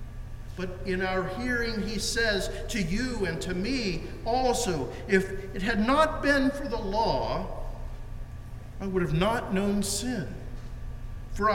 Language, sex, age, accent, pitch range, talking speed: English, male, 50-69, American, 150-205 Hz, 140 wpm